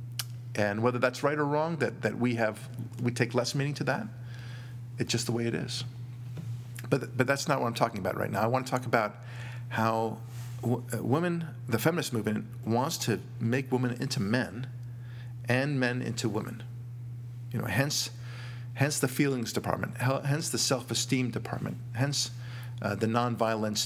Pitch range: 115-125 Hz